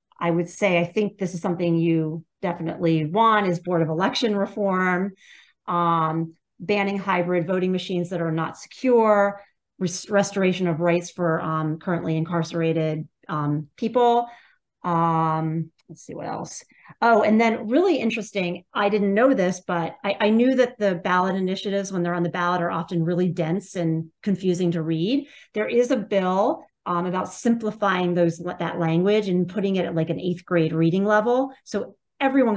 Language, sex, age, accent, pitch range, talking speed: English, female, 40-59, American, 170-215 Hz, 170 wpm